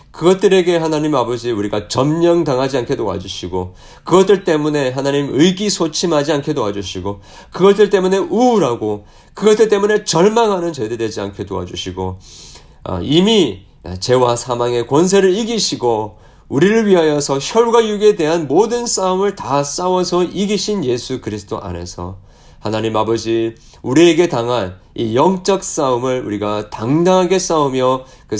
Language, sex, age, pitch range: Korean, male, 40-59, 115-185 Hz